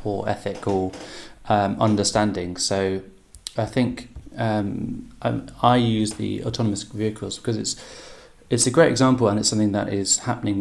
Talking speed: 140 wpm